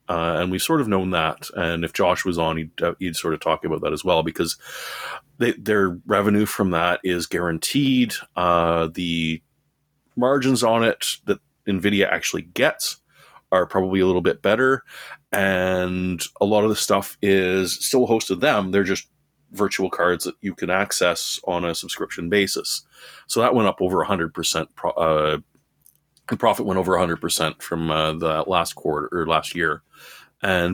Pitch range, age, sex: 85-130 Hz, 30-49, male